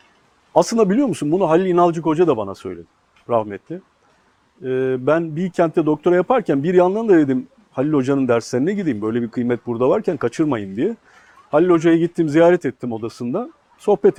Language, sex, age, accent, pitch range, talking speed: Turkish, male, 50-69, native, 125-195 Hz, 160 wpm